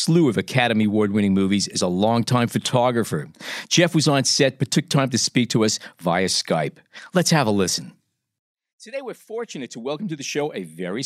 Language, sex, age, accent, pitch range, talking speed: English, male, 50-69, American, 120-160 Hz, 195 wpm